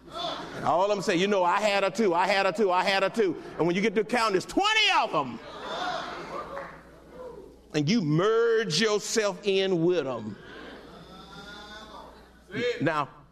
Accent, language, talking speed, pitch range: American, English, 160 wpm, 155-215 Hz